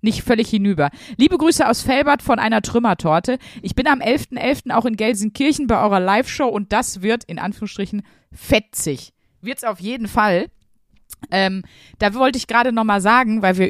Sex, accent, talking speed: female, German, 175 wpm